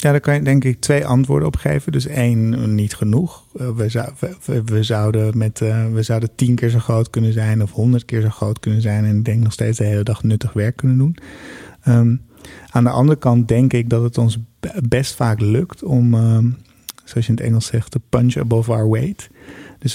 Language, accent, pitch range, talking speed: Dutch, Dutch, 115-130 Hz, 200 wpm